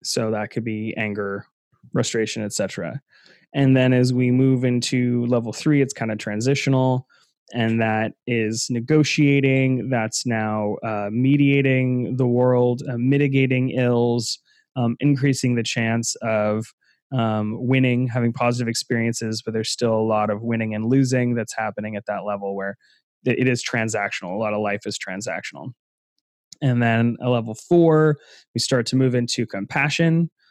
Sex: male